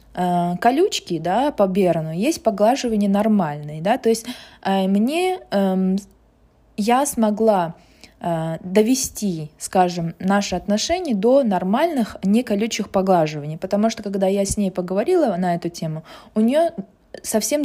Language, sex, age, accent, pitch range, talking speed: Russian, female, 20-39, native, 185-230 Hz, 125 wpm